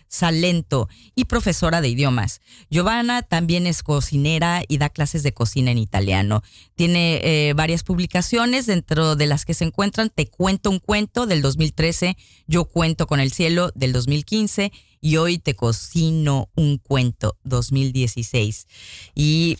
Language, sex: Spanish, female